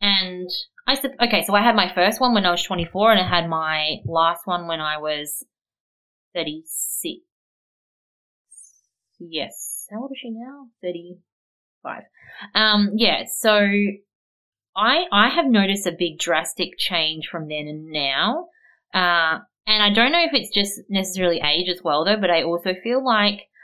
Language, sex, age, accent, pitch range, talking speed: English, female, 20-39, Australian, 160-220 Hz, 170 wpm